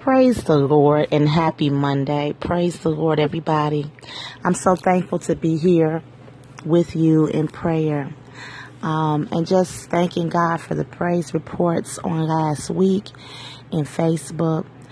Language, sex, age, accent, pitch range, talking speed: English, female, 30-49, American, 145-175 Hz, 135 wpm